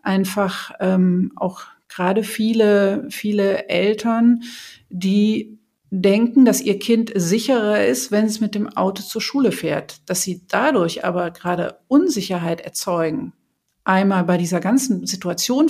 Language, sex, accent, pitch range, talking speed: German, female, German, 185-235 Hz, 130 wpm